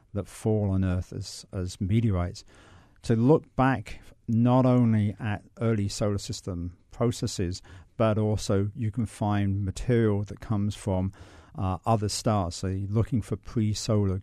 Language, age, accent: English, 50-69, British